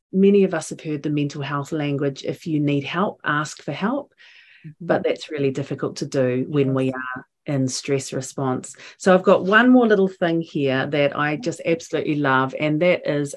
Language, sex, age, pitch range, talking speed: English, female, 40-59, 140-190 Hz, 200 wpm